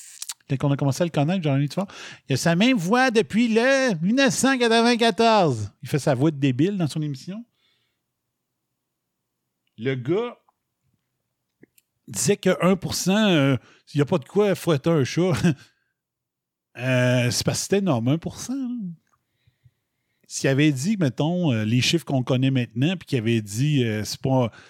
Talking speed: 155 wpm